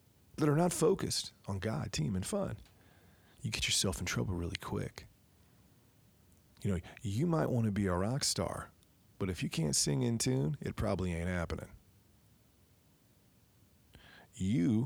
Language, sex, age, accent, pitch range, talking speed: English, male, 40-59, American, 95-115 Hz, 155 wpm